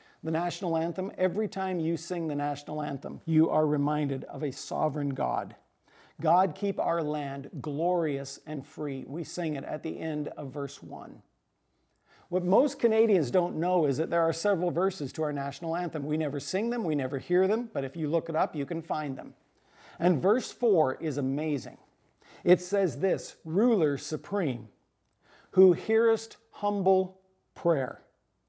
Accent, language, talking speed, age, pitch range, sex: American, English, 170 wpm, 50-69, 150-190 Hz, male